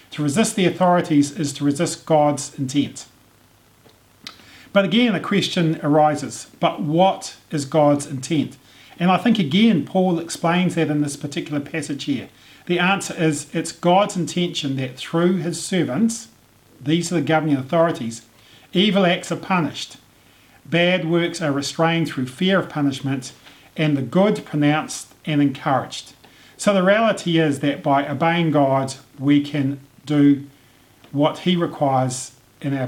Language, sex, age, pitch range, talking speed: English, male, 40-59, 145-180 Hz, 145 wpm